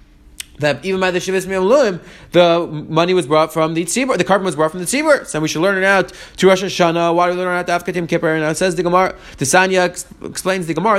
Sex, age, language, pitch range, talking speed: male, 30-49, English, 170-210 Hz, 255 wpm